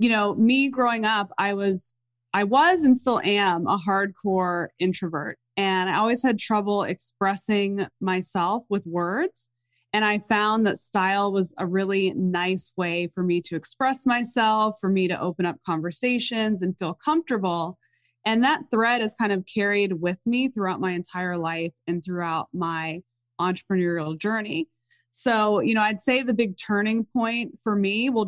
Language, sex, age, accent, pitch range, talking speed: English, female, 20-39, American, 180-220 Hz, 165 wpm